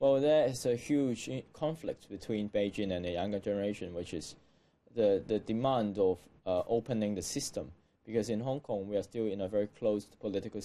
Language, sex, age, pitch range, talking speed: German, male, 20-39, 100-130 Hz, 190 wpm